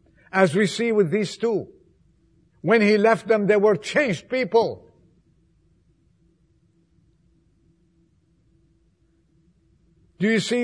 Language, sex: English, male